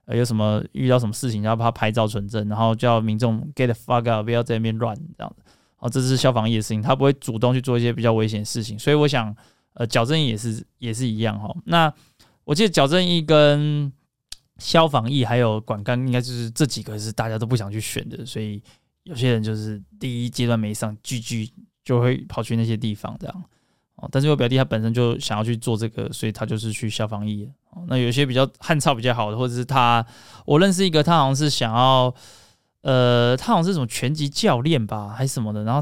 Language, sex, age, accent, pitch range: Chinese, male, 20-39, native, 110-135 Hz